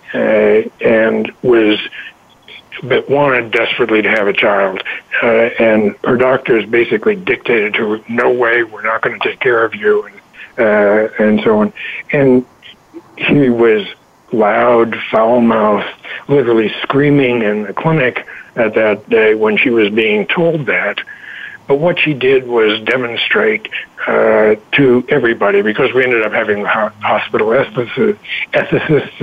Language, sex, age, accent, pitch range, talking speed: English, male, 60-79, American, 110-145 Hz, 140 wpm